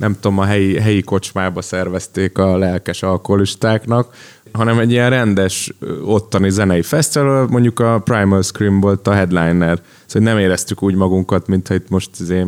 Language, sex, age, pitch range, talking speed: Hungarian, male, 20-39, 90-115 Hz, 160 wpm